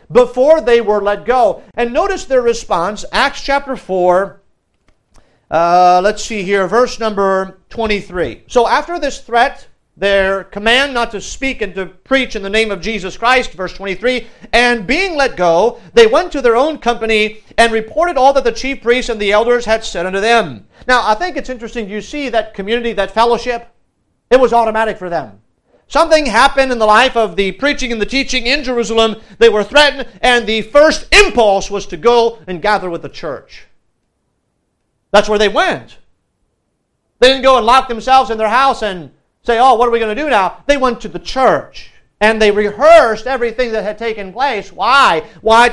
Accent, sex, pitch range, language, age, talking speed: American, male, 205-260 Hz, English, 50-69, 190 wpm